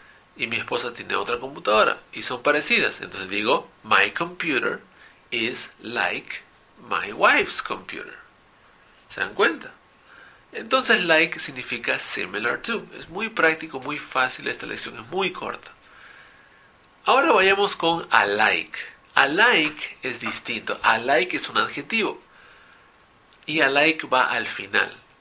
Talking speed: 125 wpm